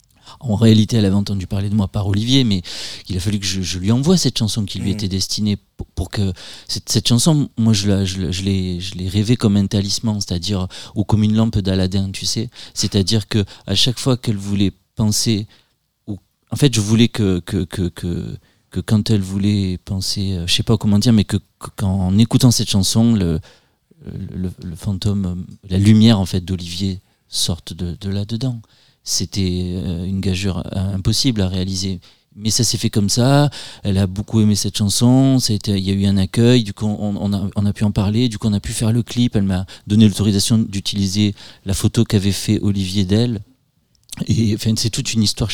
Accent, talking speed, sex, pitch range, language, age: French, 215 wpm, male, 95-115 Hz, French, 40-59